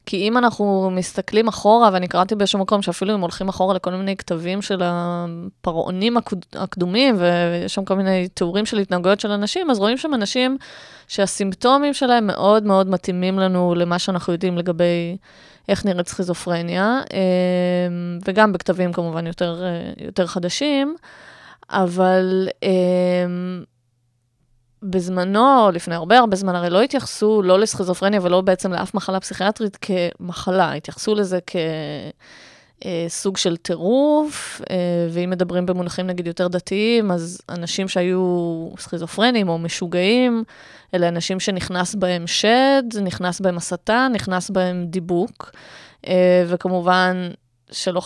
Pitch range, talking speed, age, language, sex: 175-200 Hz, 125 wpm, 20-39, Hebrew, female